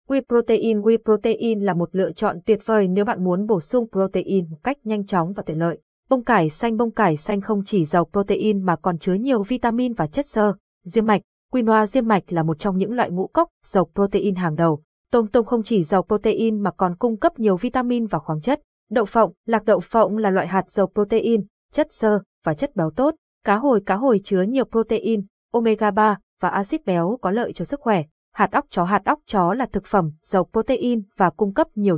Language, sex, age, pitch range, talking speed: Vietnamese, female, 20-39, 185-230 Hz, 225 wpm